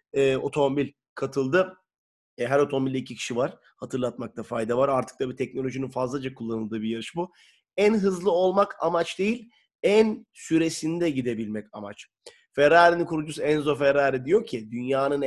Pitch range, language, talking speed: 125-165 Hz, Turkish, 145 wpm